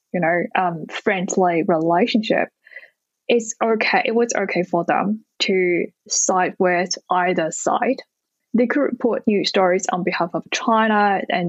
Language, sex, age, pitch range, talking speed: English, female, 10-29, 180-230 Hz, 140 wpm